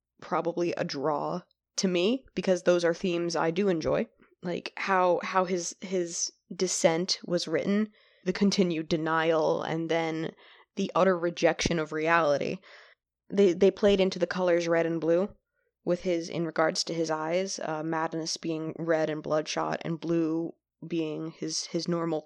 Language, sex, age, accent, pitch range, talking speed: English, female, 20-39, American, 160-185 Hz, 155 wpm